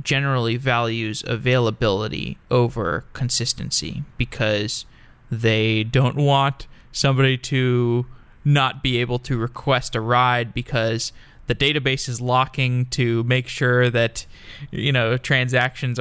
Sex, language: male, English